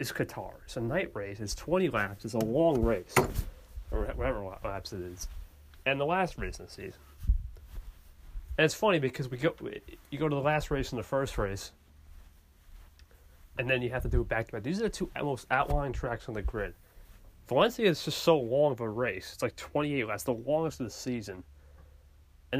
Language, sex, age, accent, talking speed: English, male, 30-49, American, 210 wpm